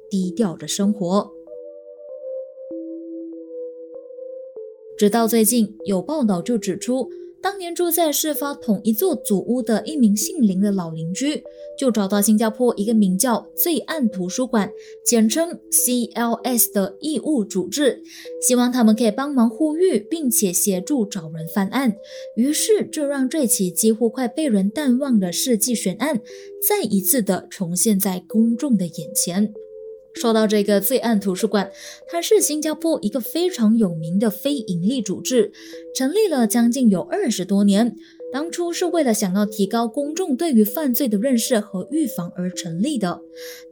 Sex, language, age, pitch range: female, Chinese, 20-39, 200-285 Hz